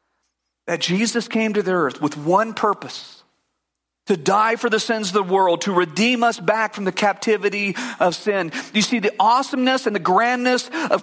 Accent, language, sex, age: American, English, male, 40-59